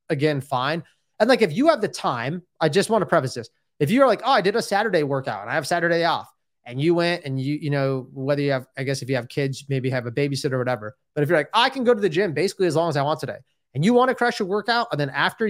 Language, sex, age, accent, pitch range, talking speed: English, male, 20-39, American, 135-170 Hz, 300 wpm